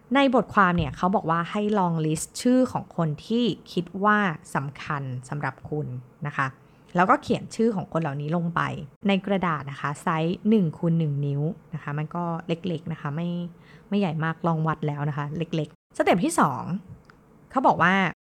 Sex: female